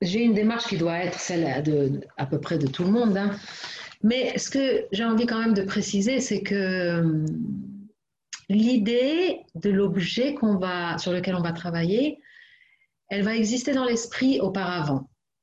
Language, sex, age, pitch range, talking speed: French, female, 40-59, 190-245 Hz, 170 wpm